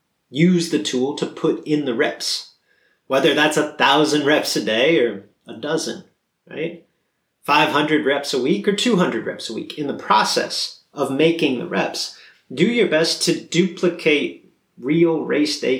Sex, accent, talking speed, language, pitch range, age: male, American, 165 wpm, English, 135-170 Hz, 30-49